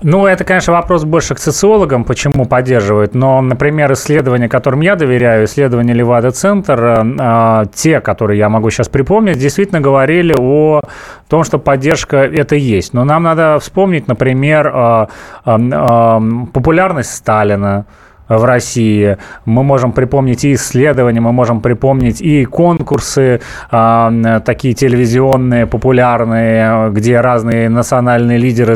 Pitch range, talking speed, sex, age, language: 115-150 Hz, 120 wpm, male, 30-49, Russian